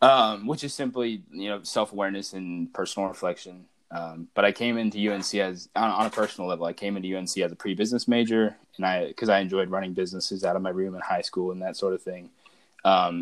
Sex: male